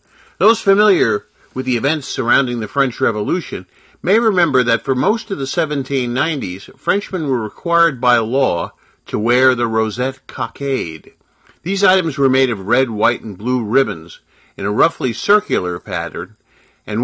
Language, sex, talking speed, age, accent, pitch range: English, male, 150 wpm, 50-69, American, 115-150 Hz